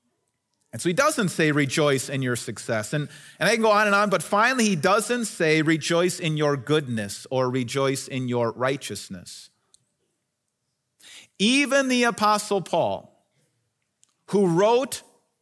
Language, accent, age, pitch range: English, American, 40-59, 145-210 Hz